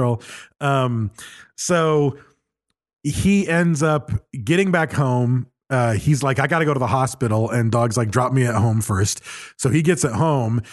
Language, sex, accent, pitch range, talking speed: English, male, American, 125-150 Hz, 175 wpm